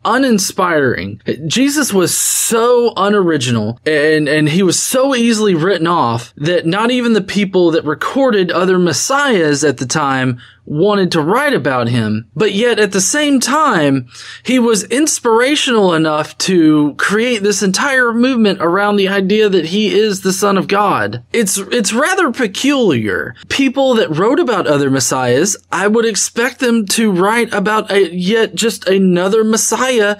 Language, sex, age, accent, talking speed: English, male, 20-39, American, 155 wpm